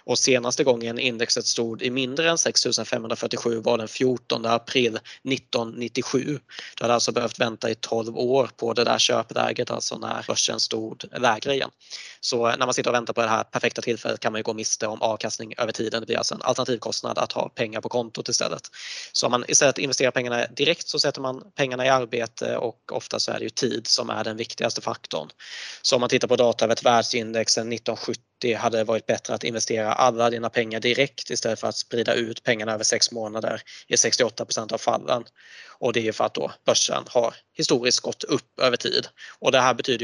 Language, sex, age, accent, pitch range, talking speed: Swedish, male, 20-39, native, 115-130 Hz, 205 wpm